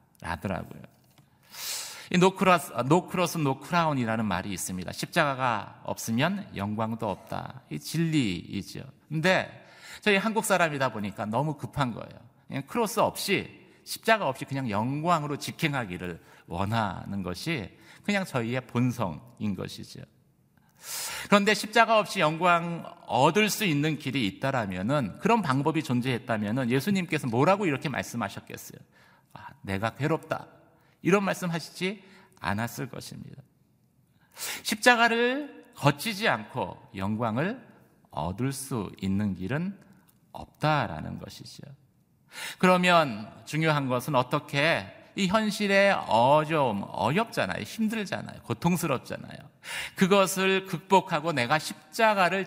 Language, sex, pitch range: Korean, male, 120-190 Hz